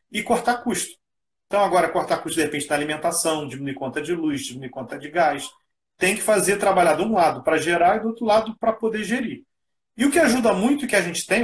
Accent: Brazilian